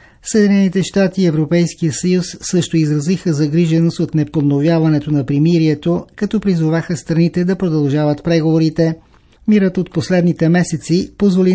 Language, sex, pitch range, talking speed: Bulgarian, male, 155-175 Hz, 120 wpm